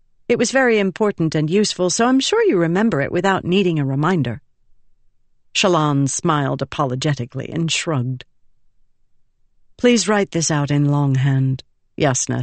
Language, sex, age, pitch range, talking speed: English, female, 50-69, 135-195 Hz, 135 wpm